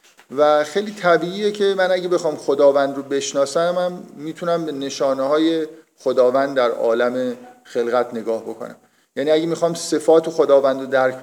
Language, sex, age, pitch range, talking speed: Persian, male, 50-69, 130-165 Hz, 150 wpm